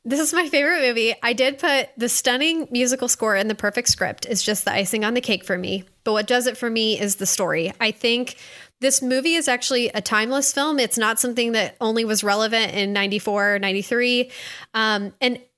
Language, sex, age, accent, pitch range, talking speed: English, female, 10-29, American, 205-250 Hz, 215 wpm